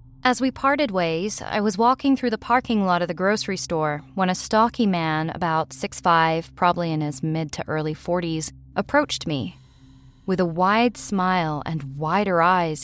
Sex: female